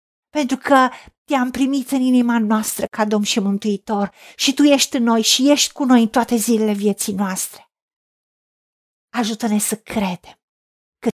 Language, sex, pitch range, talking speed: Romanian, female, 200-270 Hz, 155 wpm